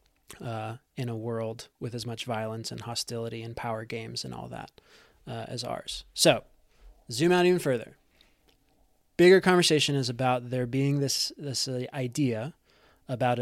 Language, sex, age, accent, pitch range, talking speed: English, male, 20-39, American, 125-155 Hz, 155 wpm